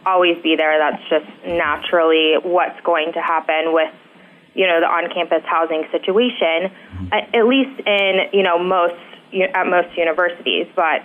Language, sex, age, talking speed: English, female, 20-39, 145 wpm